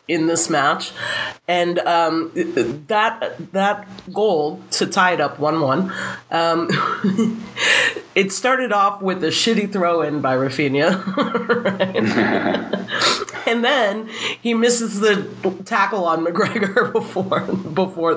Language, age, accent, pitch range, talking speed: English, 30-49, American, 155-210 Hz, 110 wpm